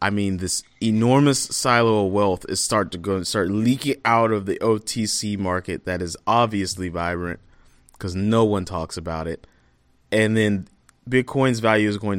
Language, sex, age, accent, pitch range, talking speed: English, male, 30-49, American, 95-130 Hz, 170 wpm